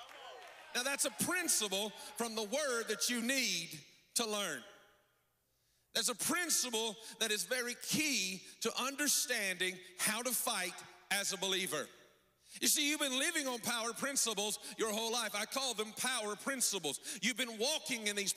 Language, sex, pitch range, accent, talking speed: English, male, 210-260 Hz, American, 155 wpm